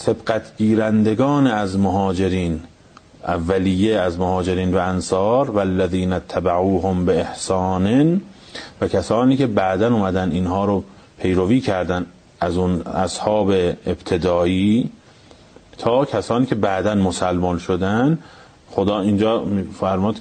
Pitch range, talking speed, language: 95-120 Hz, 105 wpm, Persian